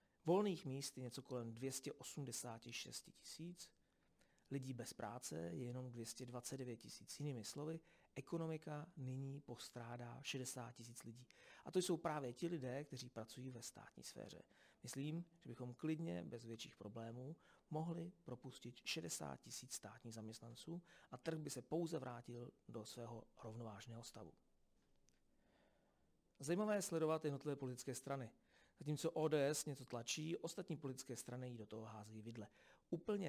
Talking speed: 135 wpm